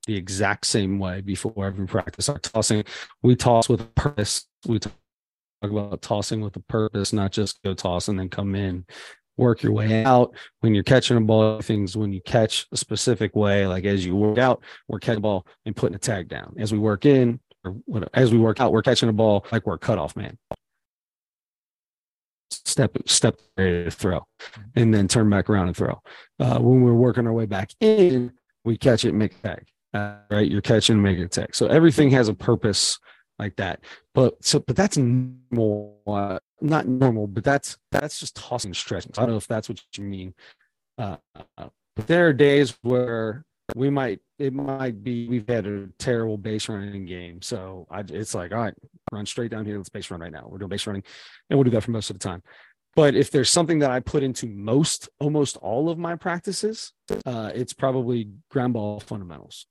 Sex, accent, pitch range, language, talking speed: male, American, 100-125 Hz, English, 205 wpm